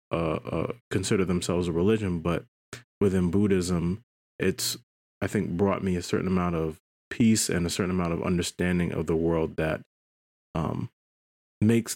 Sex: male